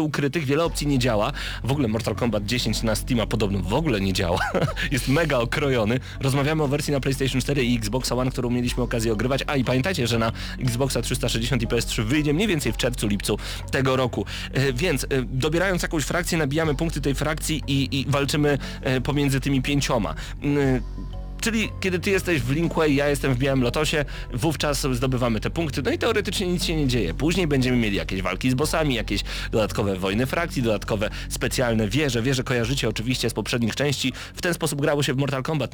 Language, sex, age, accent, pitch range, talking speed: Polish, male, 30-49, native, 115-150 Hz, 190 wpm